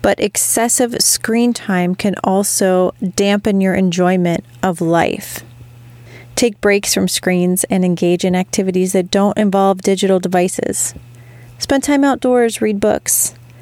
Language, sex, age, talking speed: English, female, 30-49, 130 wpm